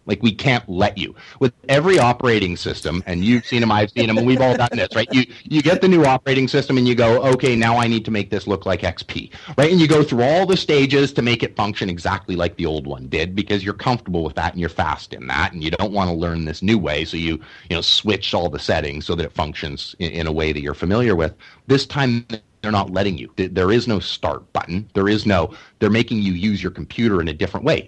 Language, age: English, 30-49